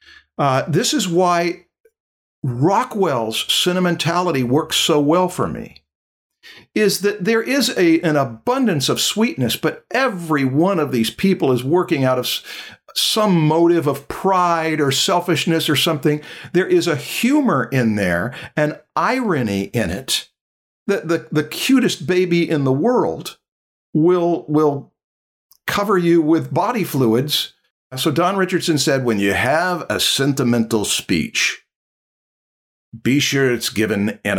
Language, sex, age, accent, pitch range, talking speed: English, male, 50-69, American, 125-175 Hz, 135 wpm